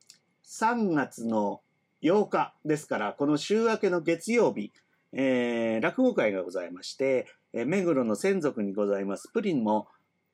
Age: 30-49